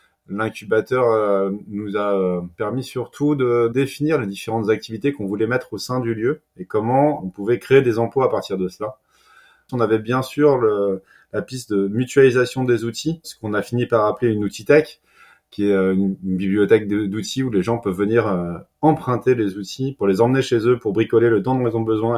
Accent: French